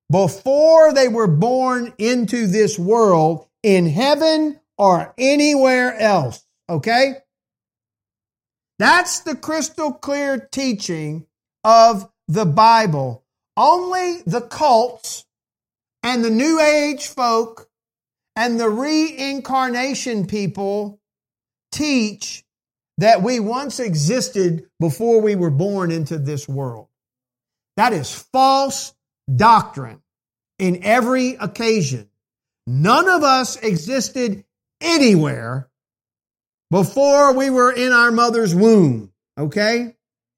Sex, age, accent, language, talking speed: male, 50-69, American, English, 95 wpm